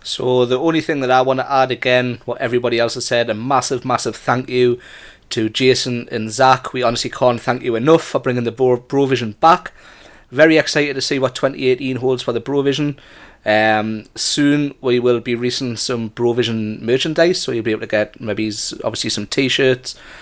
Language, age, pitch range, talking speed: English, 30-49, 120-155 Hz, 195 wpm